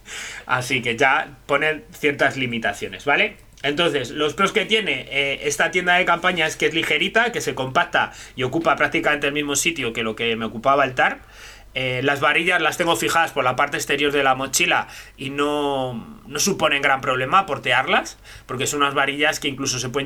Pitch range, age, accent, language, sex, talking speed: 125-155 Hz, 30-49, Spanish, Spanish, male, 195 wpm